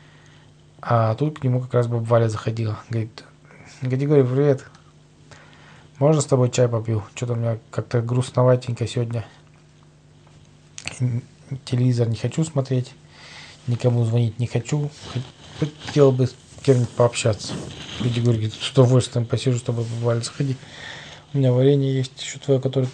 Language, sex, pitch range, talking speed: Russian, male, 120-140 Hz, 135 wpm